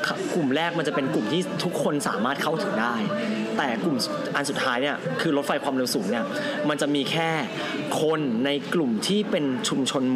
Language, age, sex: Thai, 20-39, male